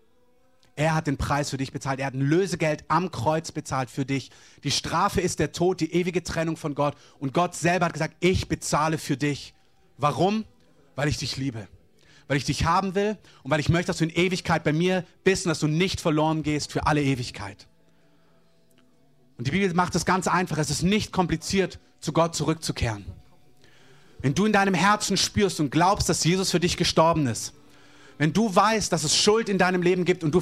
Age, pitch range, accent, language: 30-49, 145-195 Hz, German, German